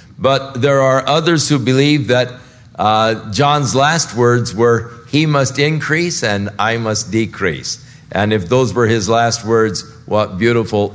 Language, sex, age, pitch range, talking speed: English, male, 50-69, 100-125 Hz, 155 wpm